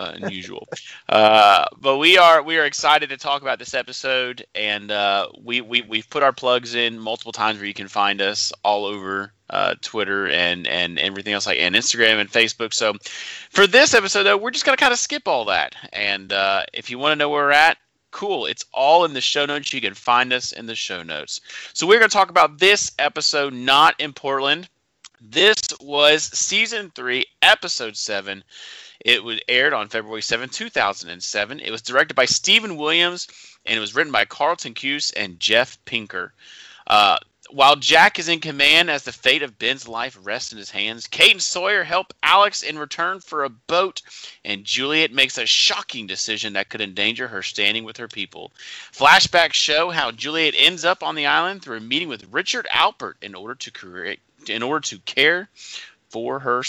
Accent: American